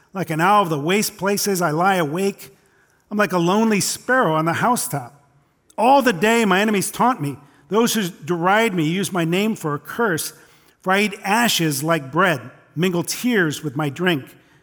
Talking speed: 190 wpm